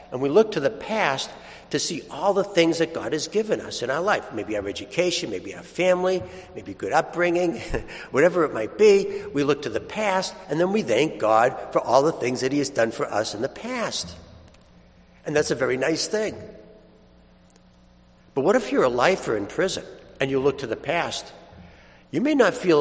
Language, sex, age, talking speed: English, male, 60-79, 210 wpm